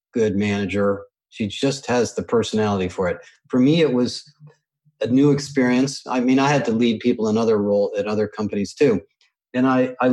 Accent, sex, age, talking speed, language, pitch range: American, male, 40-59, 195 wpm, English, 115-145 Hz